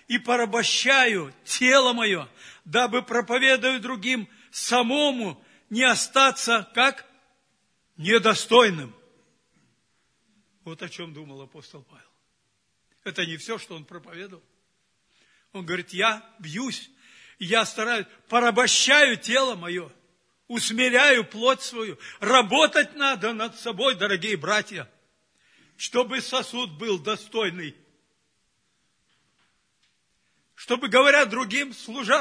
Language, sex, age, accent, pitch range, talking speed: Russian, male, 60-79, native, 200-260 Hz, 95 wpm